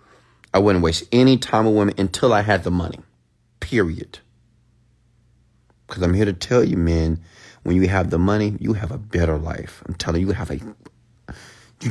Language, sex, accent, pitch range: English, male, American, 85-115 Hz